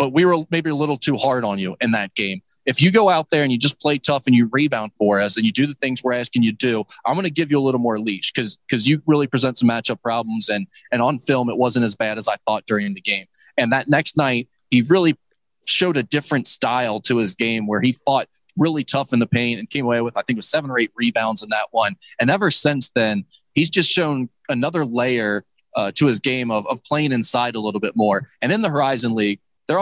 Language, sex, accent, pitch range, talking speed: English, male, American, 115-140 Hz, 265 wpm